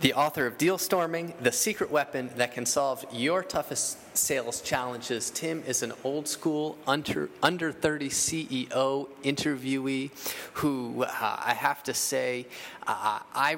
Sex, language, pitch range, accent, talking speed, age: male, English, 120-150 Hz, American, 145 wpm, 30-49